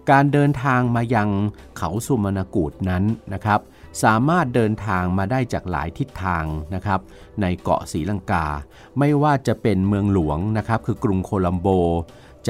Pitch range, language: 90-115 Hz, Thai